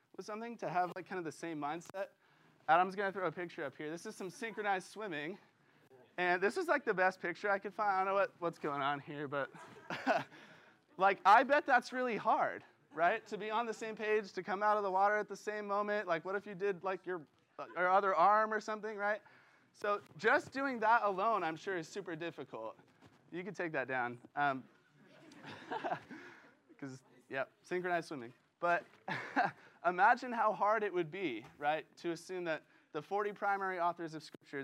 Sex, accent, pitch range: male, American, 145-200 Hz